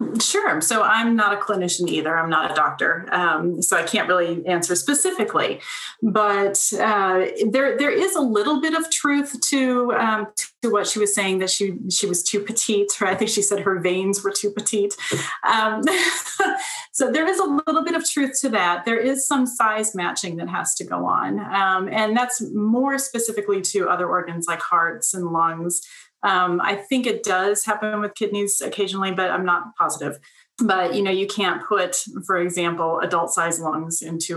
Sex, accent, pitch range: female, American, 170-215 Hz